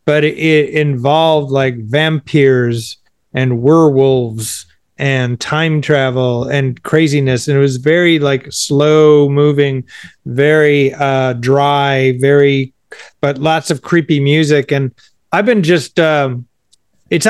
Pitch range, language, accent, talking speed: 130-160 Hz, English, American, 120 wpm